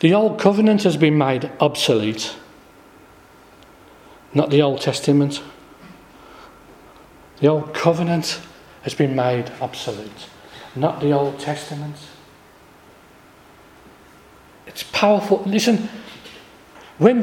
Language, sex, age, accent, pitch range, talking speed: English, male, 40-59, British, 160-235 Hz, 90 wpm